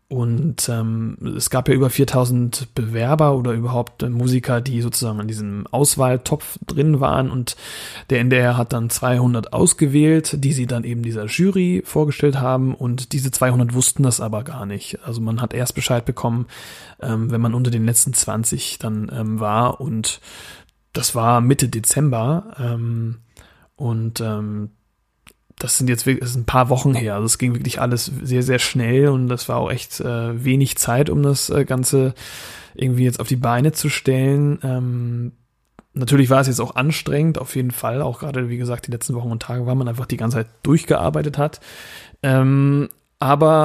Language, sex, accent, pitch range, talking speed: German, male, German, 115-135 Hz, 180 wpm